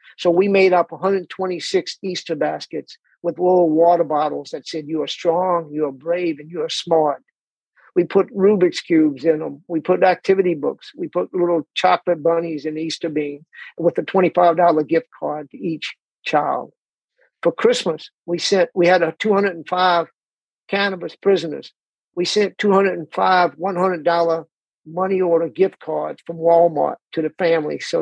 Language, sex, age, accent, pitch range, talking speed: English, male, 50-69, American, 165-195 Hz, 155 wpm